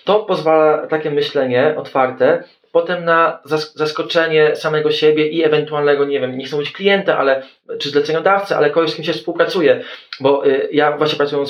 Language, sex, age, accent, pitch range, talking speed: Polish, male, 20-39, native, 130-200 Hz, 165 wpm